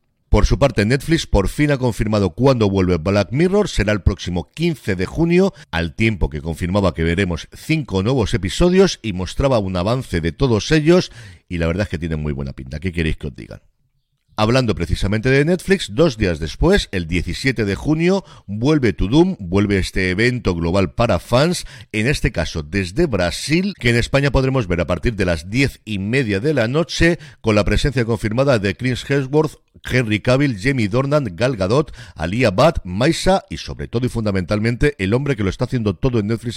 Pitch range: 95-140 Hz